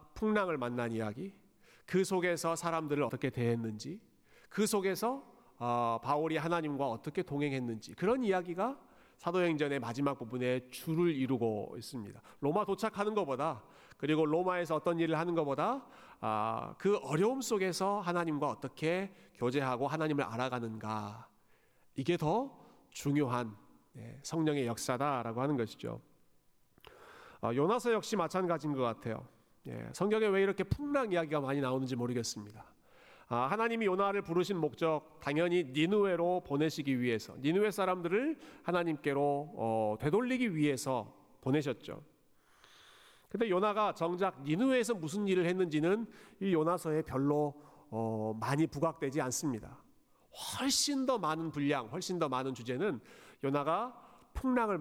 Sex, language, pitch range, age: male, Korean, 130-190 Hz, 40-59